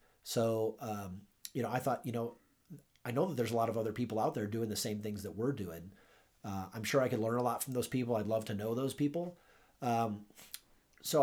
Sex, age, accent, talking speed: male, 30-49, American, 240 wpm